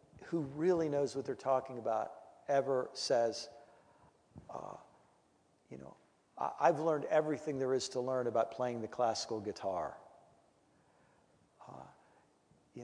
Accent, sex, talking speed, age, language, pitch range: American, male, 125 wpm, 50-69, English, 125-155 Hz